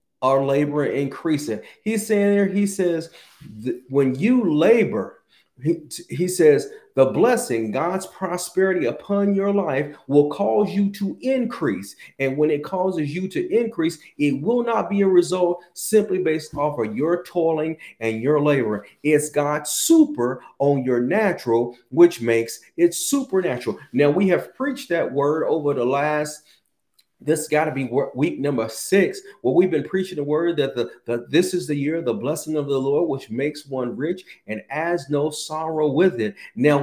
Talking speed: 170 wpm